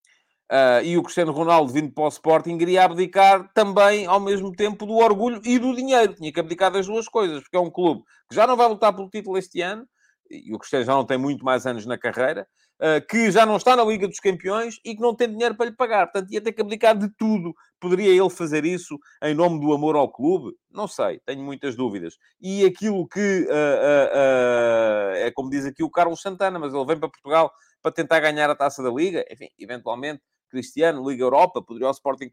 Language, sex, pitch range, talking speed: English, male, 135-200 Hz, 215 wpm